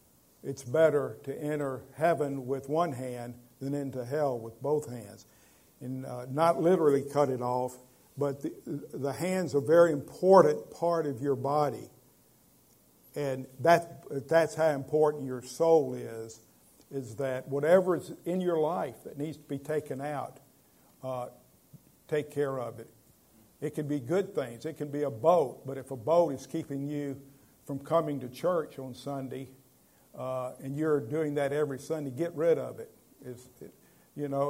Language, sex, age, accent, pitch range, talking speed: English, male, 50-69, American, 130-160 Hz, 165 wpm